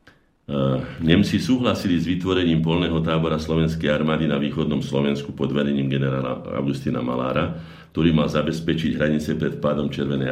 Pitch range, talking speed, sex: 70-85 Hz, 135 wpm, male